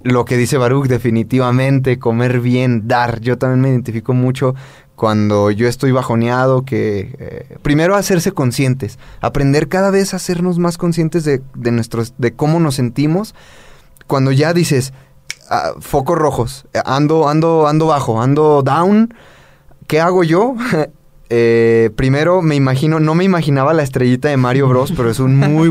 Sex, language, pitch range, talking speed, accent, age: male, Spanish, 130-170 Hz, 155 wpm, Mexican, 20-39